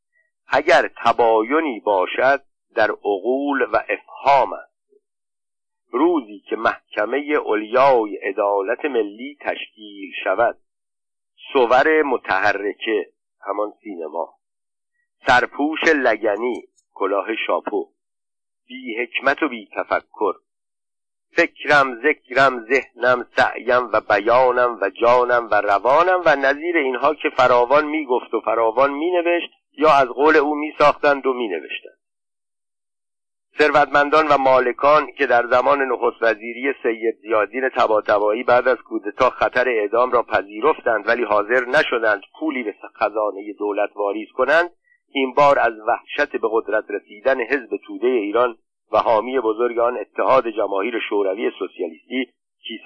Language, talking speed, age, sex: Persian, 115 wpm, 50-69, male